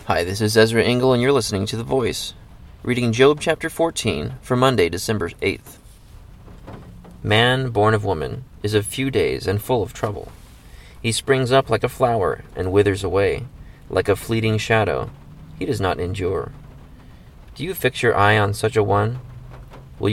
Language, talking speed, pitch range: English, 175 wpm, 100-125 Hz